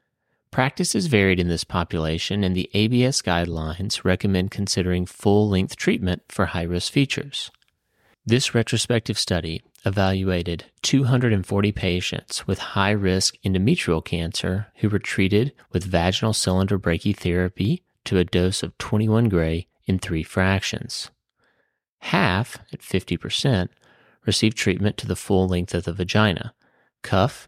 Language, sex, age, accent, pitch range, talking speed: English, male, 30-49, American, 90-110 Hz, 120 wpm